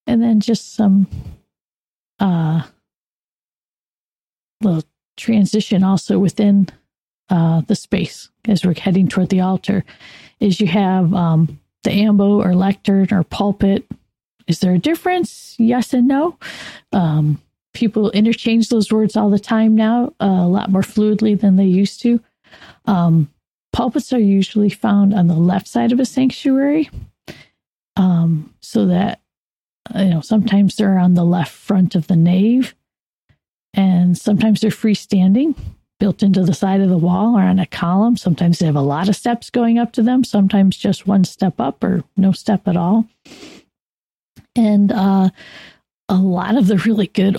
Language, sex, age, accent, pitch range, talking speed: English, female, 40-59, American, 180-220 Hz, 155 wpm